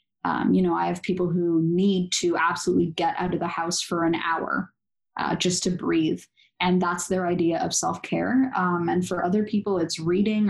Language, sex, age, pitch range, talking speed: English, female, 10-29, 165-195 Hz, 200 wpm